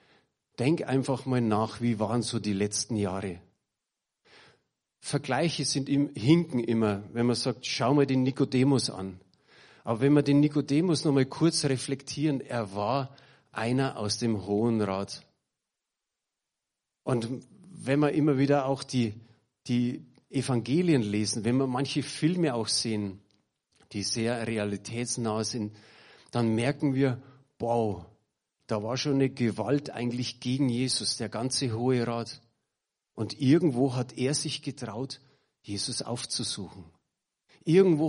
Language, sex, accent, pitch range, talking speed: German, male, German, 115-145 Hz, 135 wpm